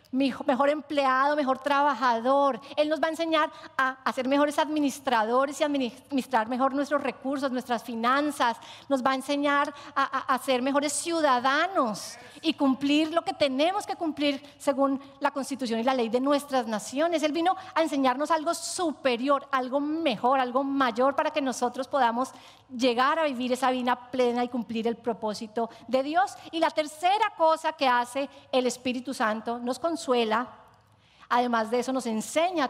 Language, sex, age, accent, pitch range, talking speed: English, female, 40-59, American, 255-310 Hz, 160 wpm